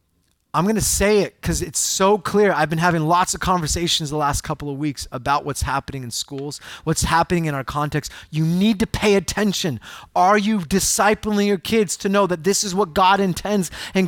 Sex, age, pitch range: male, 30-49, 170-240 Hz